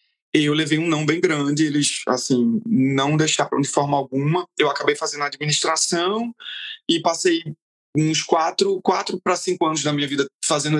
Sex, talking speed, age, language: male, 160 wpm, 20-39, Portuguese